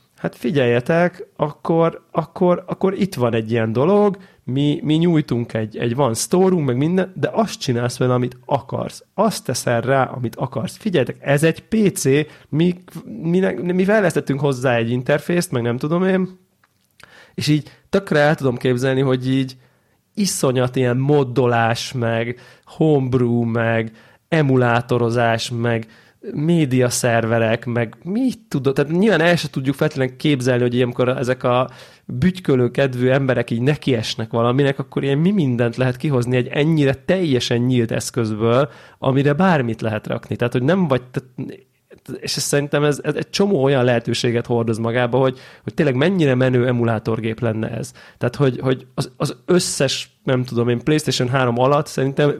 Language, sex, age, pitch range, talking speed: Hungarian, male, 30-49, 120-155 Hz, 155 wpm